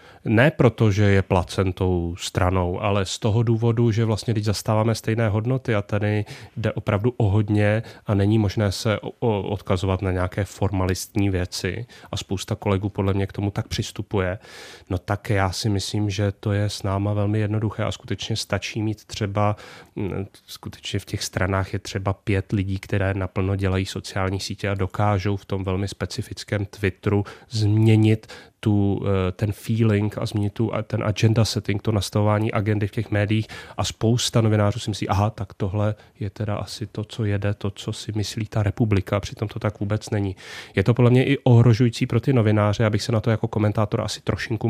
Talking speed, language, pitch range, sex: 180 wpm, Czech, 100-110 Hz, male